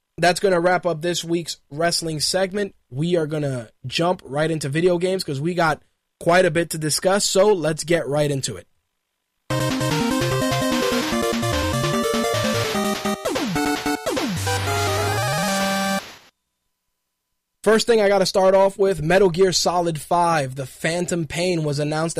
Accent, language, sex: American, English, male